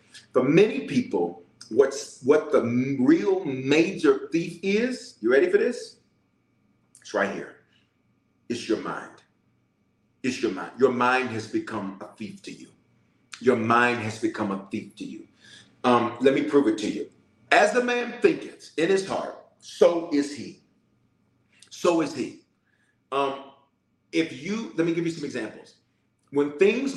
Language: English